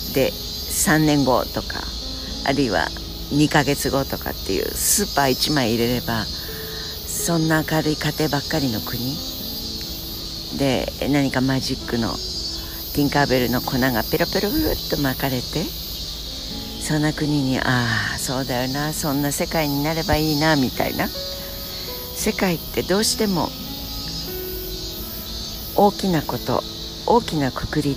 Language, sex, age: Japanese, female, 60-79